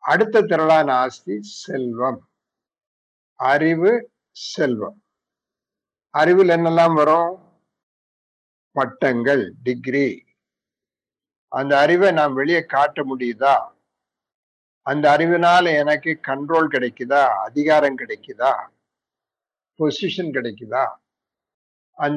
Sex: male